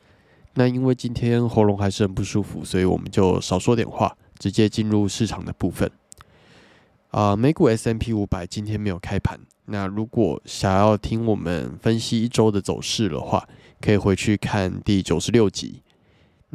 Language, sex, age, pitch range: Chinese, male, 20-39, 95-115 Hz